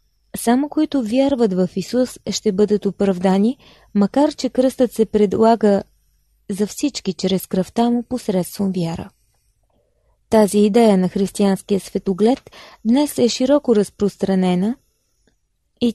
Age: 20-39